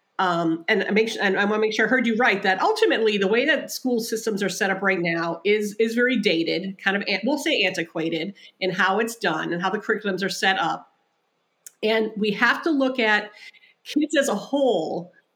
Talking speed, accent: 215 wpm, American